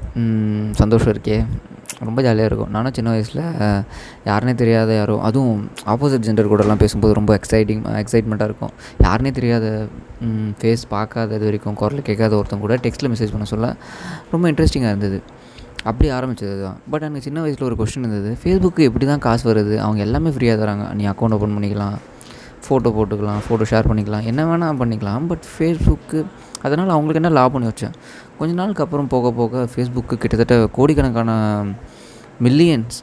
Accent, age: native, 20-39